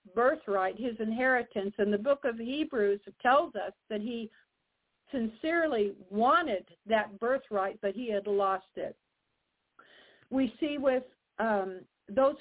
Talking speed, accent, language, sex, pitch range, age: 125 wpm, American, English, female, 215-260 Hz, 60-79